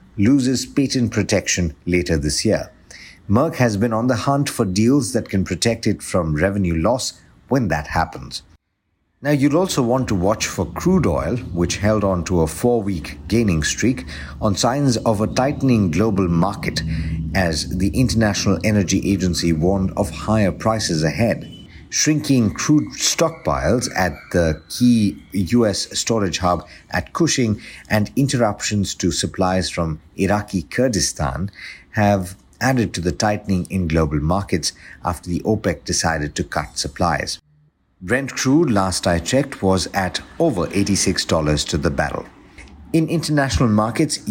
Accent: Indian